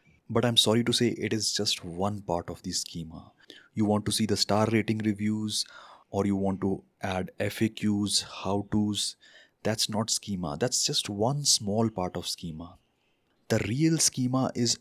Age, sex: 20-39, male